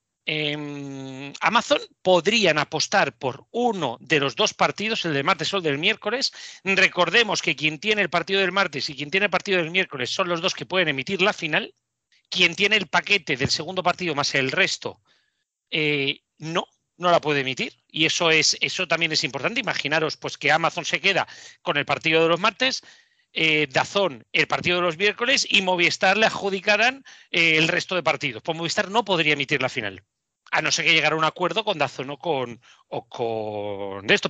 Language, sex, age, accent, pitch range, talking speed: Spanish, male, 40-59, Spanish, 150-195 Hz, 195 wpm